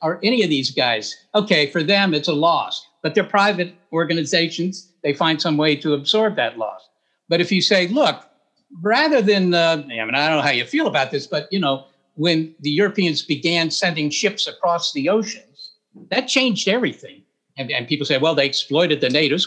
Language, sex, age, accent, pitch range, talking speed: English, male, 60-79, American, 165-220 Hz, 200 wpm